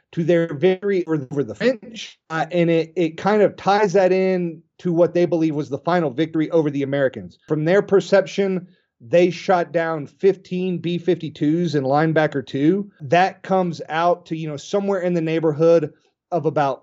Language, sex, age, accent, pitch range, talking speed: English, male, 30-49, American, 150-175 Hz, 175 wpm